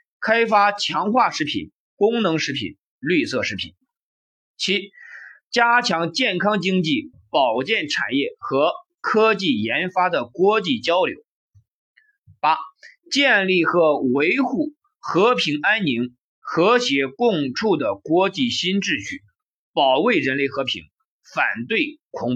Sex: male